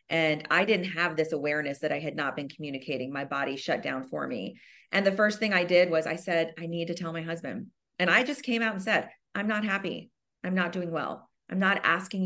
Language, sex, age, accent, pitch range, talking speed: English, female, 30-49, American, 165-235 Hz, 245 wpm